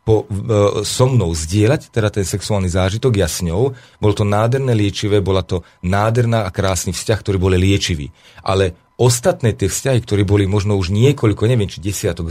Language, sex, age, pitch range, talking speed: Slovak, male, 40-59, 95-125 Hz, 175 wpm